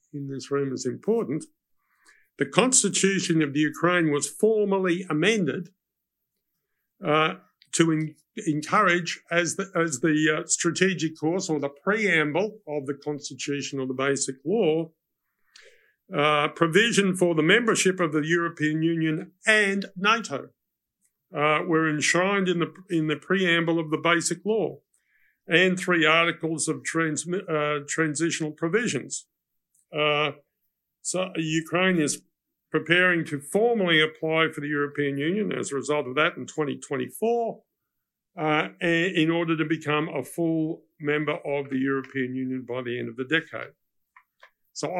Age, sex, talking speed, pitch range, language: 50-69, male, 135 wpm, 145-180 Hz, English